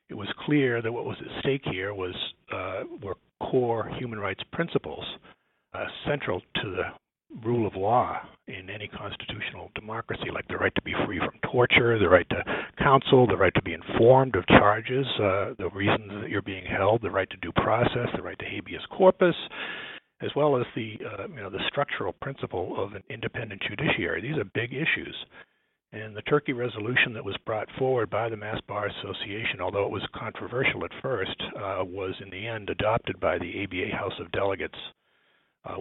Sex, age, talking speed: male, 60-79, 190 wpm